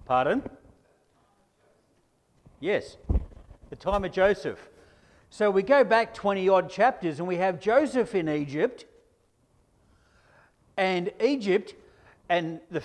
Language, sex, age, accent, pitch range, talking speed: English, male, 50-69, Australian, 160-220 Hz, 105 wpm